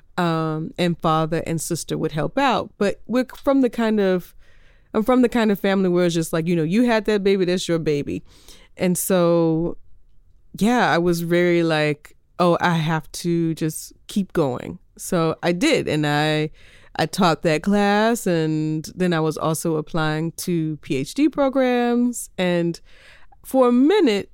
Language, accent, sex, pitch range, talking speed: English, American, female, 160-195 Hz, 170 wpm